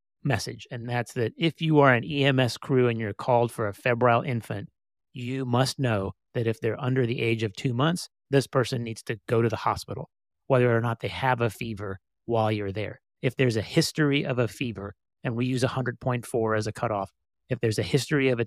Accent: American